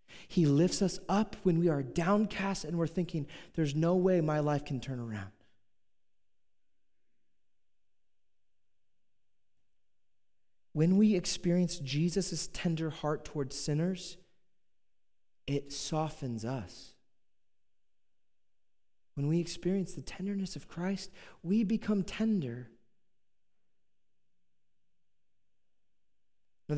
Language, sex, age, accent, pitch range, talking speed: English, male, 30-49, American, 105-180 Hz, 90 wpm